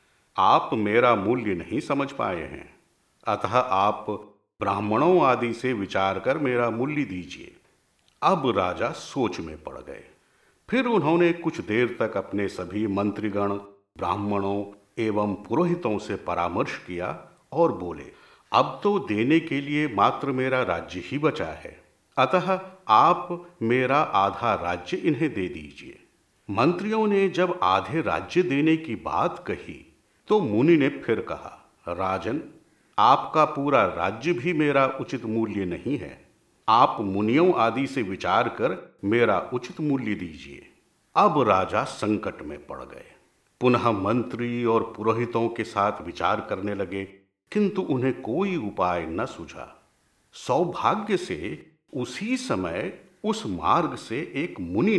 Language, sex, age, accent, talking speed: Hindi, male, 50-69, native, 135 wpm